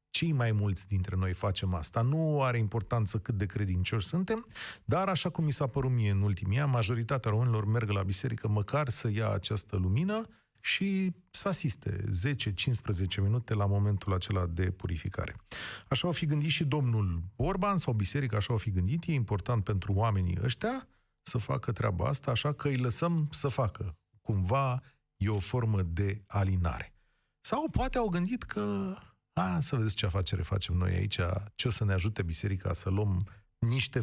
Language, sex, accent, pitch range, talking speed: Romanian, male, native, 100-135 Hz, 175 wpm